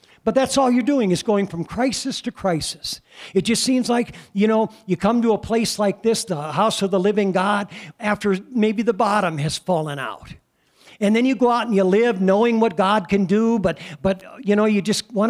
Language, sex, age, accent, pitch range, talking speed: English, male, 60-79, American, 185-235 Hz, 225 wpm